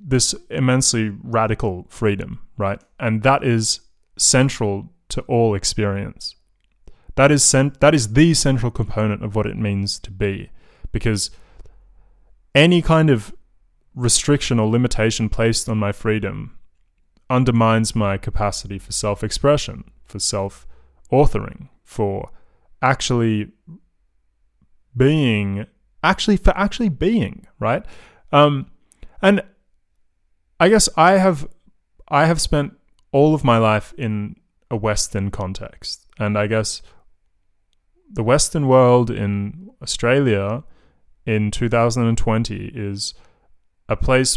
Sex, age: male, 20-39